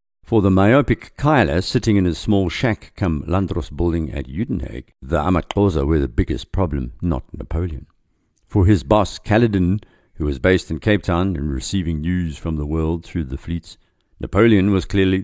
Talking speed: 175 wpm